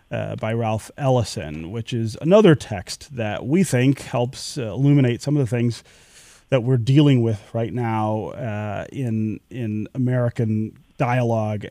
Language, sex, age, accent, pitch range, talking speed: English, male, 30-49, American, 115-140 Hz, 150 wpm